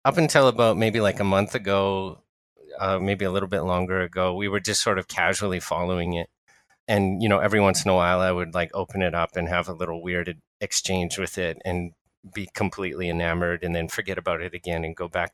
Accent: American